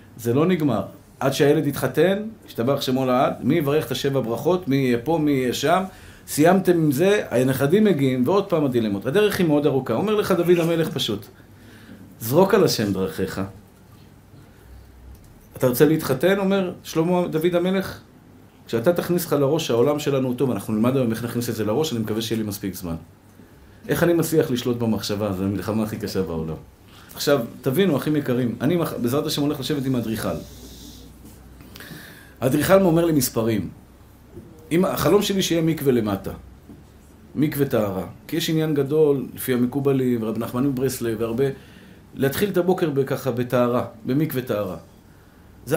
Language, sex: Hebrew, male